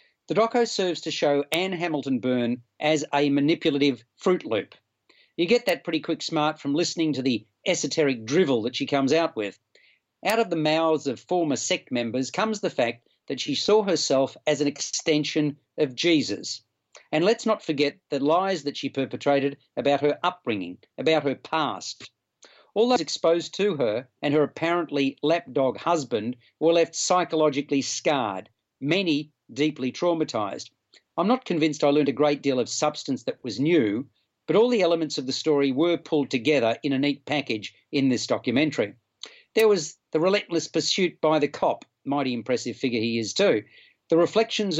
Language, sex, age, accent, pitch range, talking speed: English, male, 40-59, Australian, 140-170 Hz, 170 wpm